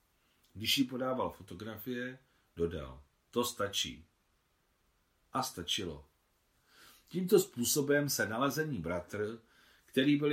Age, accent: 50-69, native